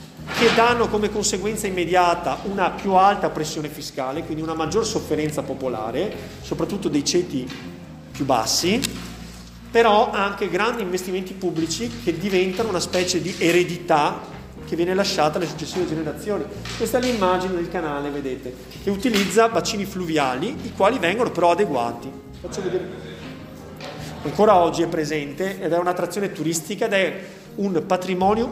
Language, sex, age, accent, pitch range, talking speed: Italian, male, 30-49, native, 155-195 Hz, 140 wpm